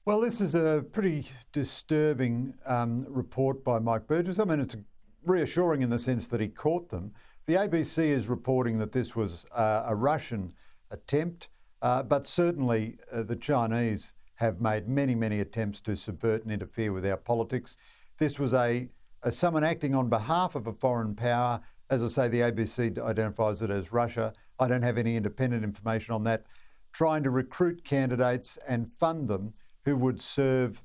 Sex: male